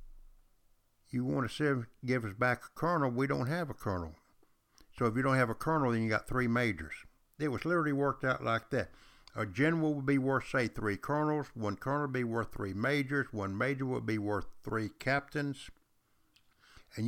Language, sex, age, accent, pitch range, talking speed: English, male, 60-79, American, 100-130 Hz, 195 wpm